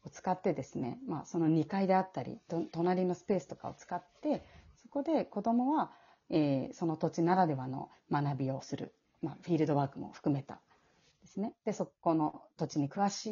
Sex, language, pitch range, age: female, Japanese, 145-215 Hz, 40-59